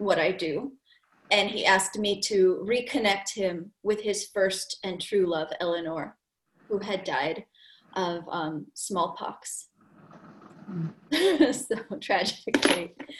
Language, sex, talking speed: English, female, 115 wpm